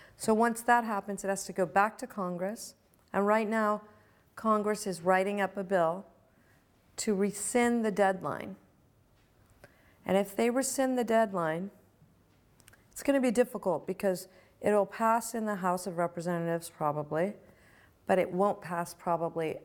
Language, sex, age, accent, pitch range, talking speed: English, female, 40-59, American, 170-200 Hz, 145 wpm